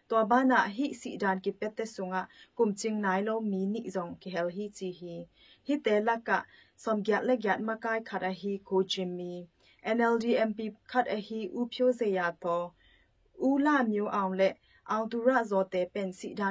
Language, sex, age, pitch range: English, female, 30-49, 185-225 Hz